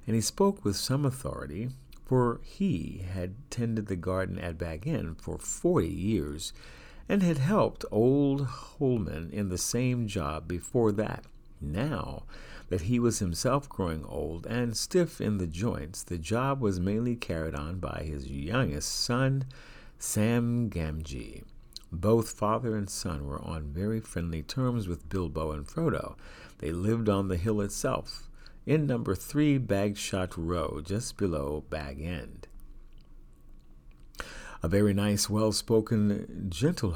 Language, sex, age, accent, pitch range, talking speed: English, male, 50-69, American, 85-125 Hz, 140 wpm